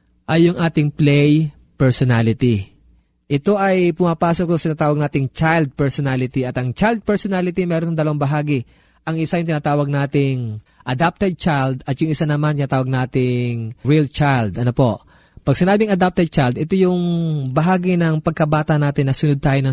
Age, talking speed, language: 20-39, 150 wpm, Filipino